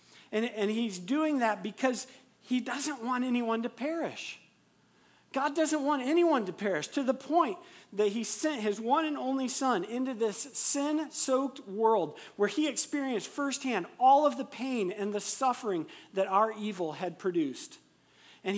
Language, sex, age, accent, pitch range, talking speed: English, male, 40-59, American, 170-235 Hz, 160 wpm